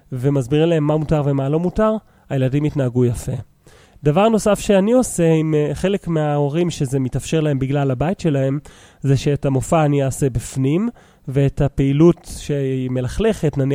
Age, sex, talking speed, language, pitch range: 30-49, male, 130 wpm, English, 135-160 Hz